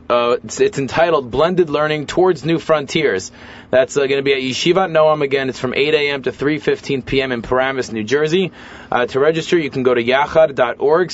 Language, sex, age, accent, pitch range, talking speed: English, male, 30-49, American, 125-160 Hz, 195 wpm